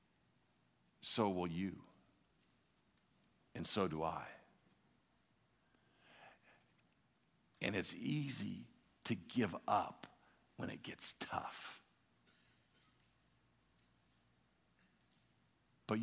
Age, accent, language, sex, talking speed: 50-69, American, English, male, 65 wpm